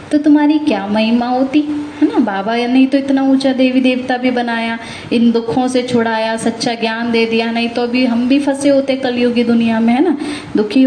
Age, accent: 20-39, native